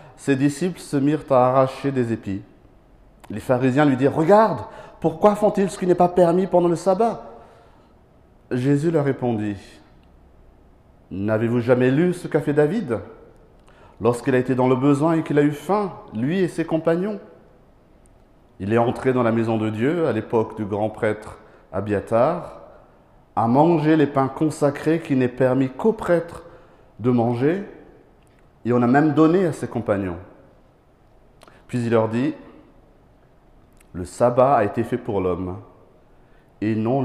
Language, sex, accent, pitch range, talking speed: French, male, French, 110-145 Hz, 160 wpm